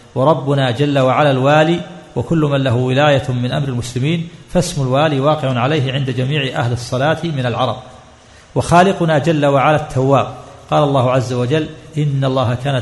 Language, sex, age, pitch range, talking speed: Arabic, male, 50-69, 130-155 Hz, 150 wpm